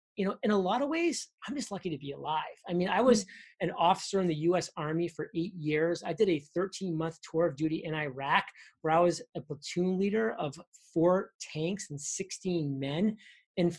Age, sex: 30-49, male